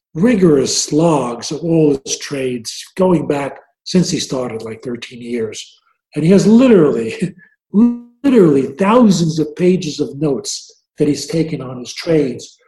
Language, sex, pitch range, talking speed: English, male, 140-180 Hz, 140 wpm